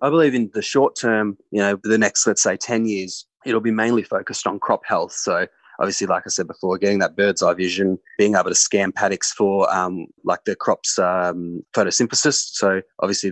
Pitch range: 95-110 Hz